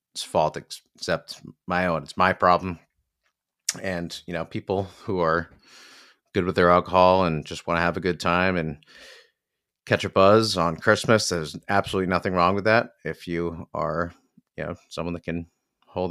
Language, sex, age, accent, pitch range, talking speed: English, male, 30-49, American, 85-105 Hz, 170 wpm